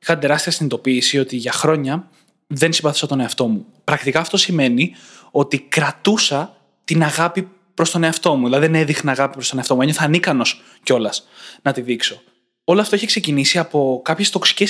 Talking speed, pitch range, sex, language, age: 175 wpm, 140-195 Hz, male, Greek, 20-39